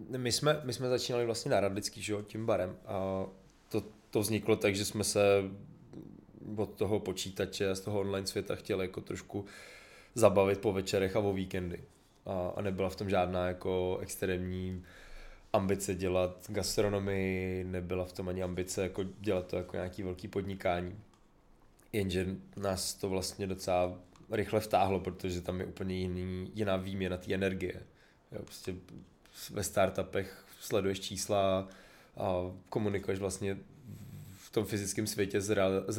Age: 20-39